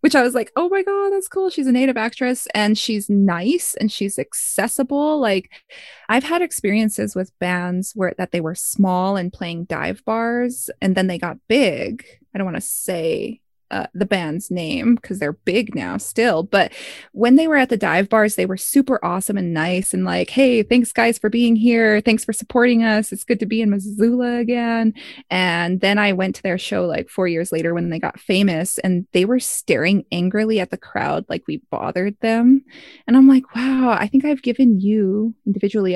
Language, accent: English, American